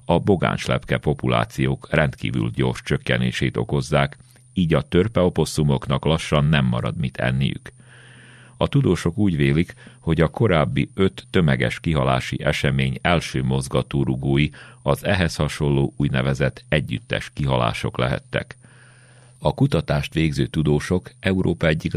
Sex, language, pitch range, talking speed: male, Hungarian, 65-85 Hz, 110 wpm